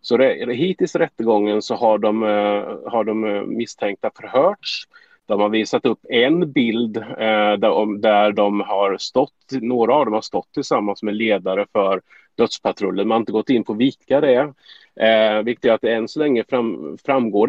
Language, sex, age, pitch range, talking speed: Swedish, male, 30-49, 100-130 Hz, 175 wpm